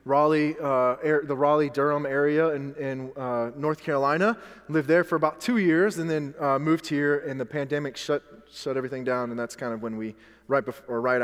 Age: 20-39